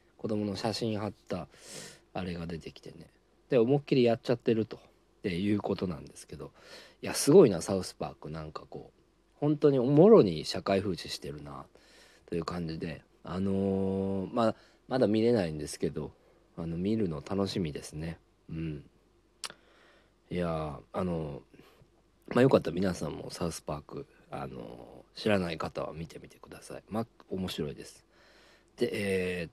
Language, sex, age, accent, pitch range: Japanese, male, 40-59, native, 85-110 Hz